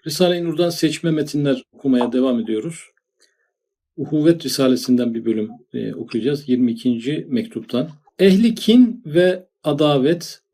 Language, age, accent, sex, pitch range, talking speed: Turkish, 50-69, native, male, 125-170 Hz, 100 wpm